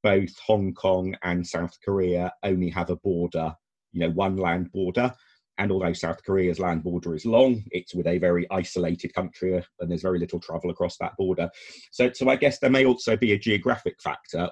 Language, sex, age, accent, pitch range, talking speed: English, male, 30-49, British, 85-105 Hz, 200 wpm